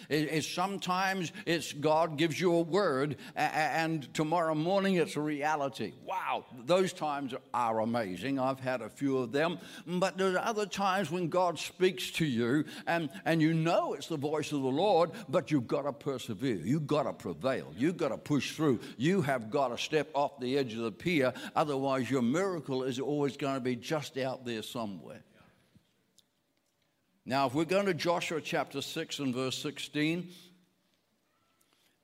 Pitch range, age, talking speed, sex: 135-170 Hz, 60-79, 170 wpm, male